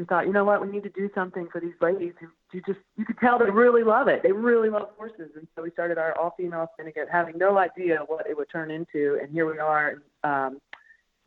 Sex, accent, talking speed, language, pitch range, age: female, American, 250 wpm, English, 155-190 Hz, 30-49